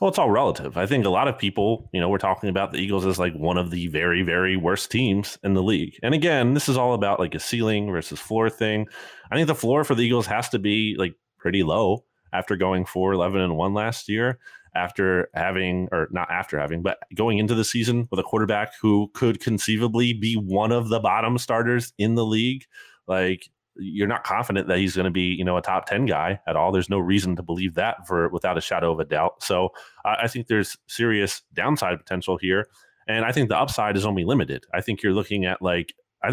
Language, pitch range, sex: English, 95-115 Hz, male